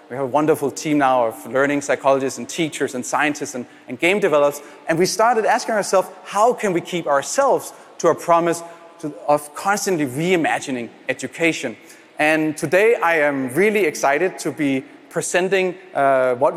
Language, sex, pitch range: Spanish, male, 150-190 Hz